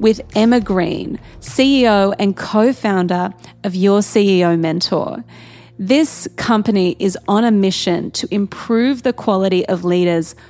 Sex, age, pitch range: female, 30-49, 185-225 Hz